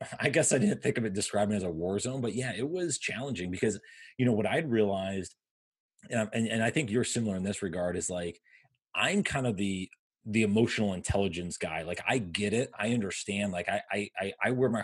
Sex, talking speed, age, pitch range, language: male, 230 wpm, 30-49, 95-125 Hz, English